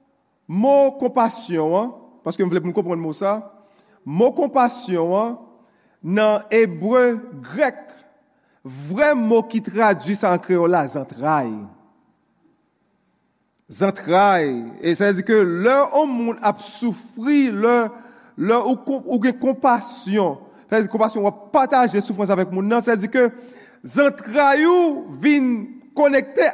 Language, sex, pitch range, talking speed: English, male, 220-280 Hz, 110 wpm